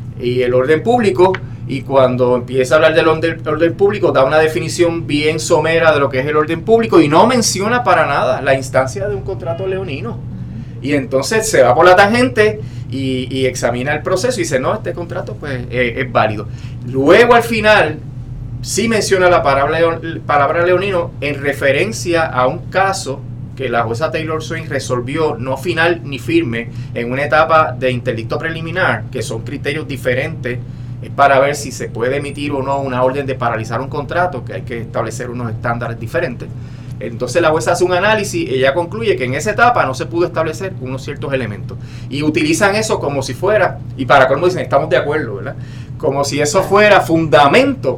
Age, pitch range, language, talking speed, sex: 30-49, 125-160 Hz, Spanish, 190 wpm, male